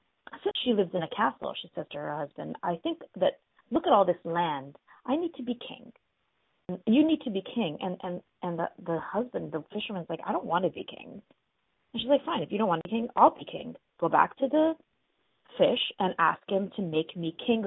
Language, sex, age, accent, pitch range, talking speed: English, female, 30-49, American, 160-220 Hz, 240 wpm